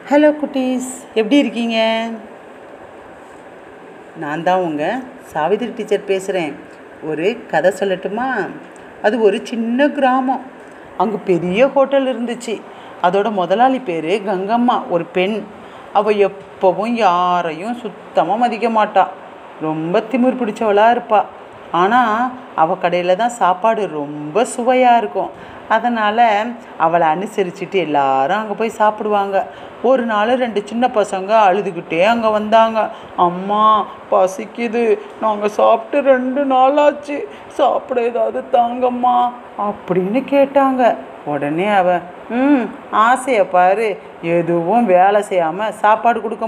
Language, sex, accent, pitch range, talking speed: Tamil, female, native, 180-240 Hz, 105 wpm